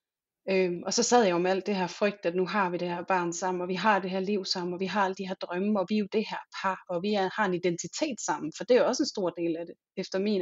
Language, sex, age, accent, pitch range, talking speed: Danish, female, 30-49, native, 180-215 Hz, 340 wpm